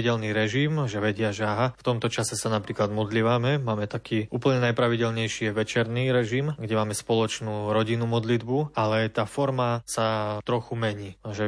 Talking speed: 150 wpm